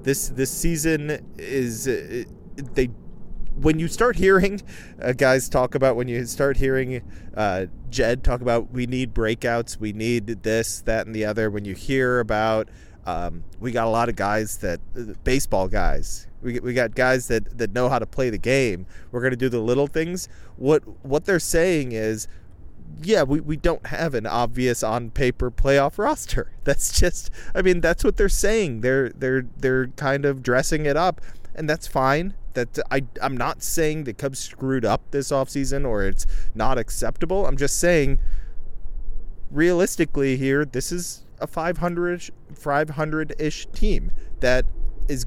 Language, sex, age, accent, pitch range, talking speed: English, male, 30-49, American, 115-145 Hz, 165 wpm